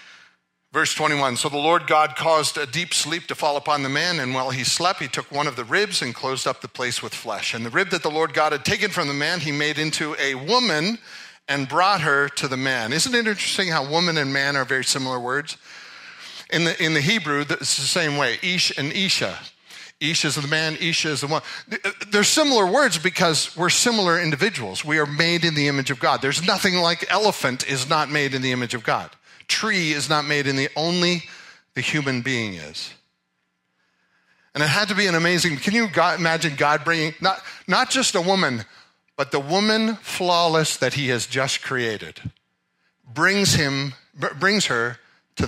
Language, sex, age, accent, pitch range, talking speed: English, male, 40-59, American, 135-170 Hz, 205 wpm